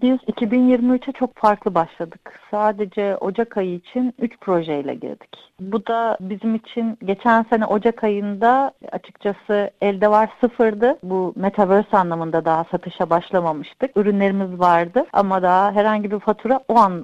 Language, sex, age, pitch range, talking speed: Turkish, female, 40-59, 200-245 Hz, 135 wpm